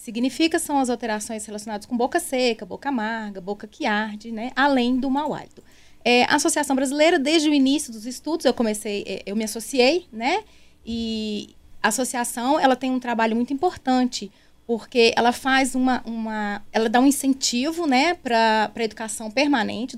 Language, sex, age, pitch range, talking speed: Portuguese, female, 20-39, 220-275 Hz, 170 wpm